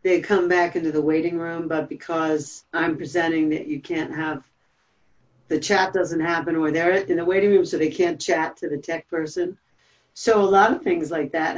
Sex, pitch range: female, 155-200 Hz